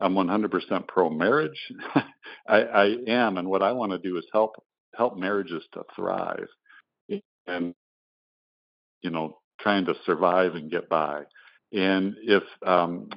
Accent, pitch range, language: American, 85-110 Hz, English